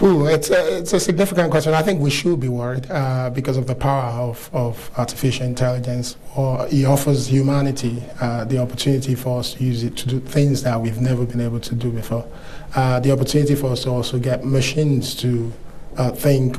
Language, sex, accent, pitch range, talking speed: English, male, Nigerian, 125-140 Hz, 195 wpm